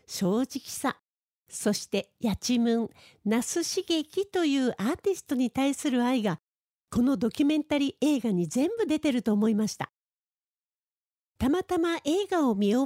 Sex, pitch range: female, 230-300 Hz